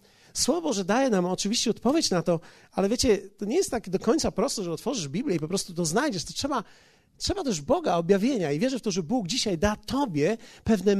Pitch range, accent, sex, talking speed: 170-230 Hz, native, male, 225 wpm